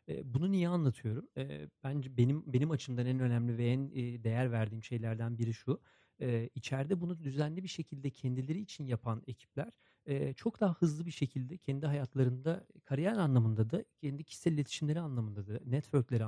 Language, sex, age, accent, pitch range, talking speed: Turkish, male, 40-59, native, 120-150 Hz, 150 wpm